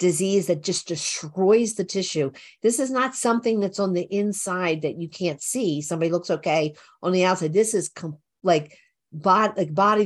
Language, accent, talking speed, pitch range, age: English, American, 175 wpm, 175-230 Hz, 50-69